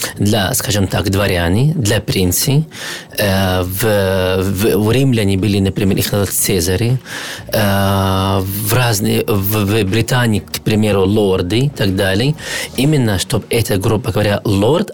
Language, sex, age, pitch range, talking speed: Ukrainian, male, 40-59, 100-125 Hz, 130 wpm